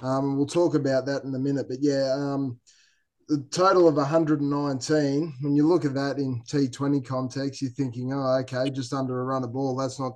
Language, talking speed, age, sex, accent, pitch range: English, 205 wpm, 20-39, male, Australian, 130-145 Hz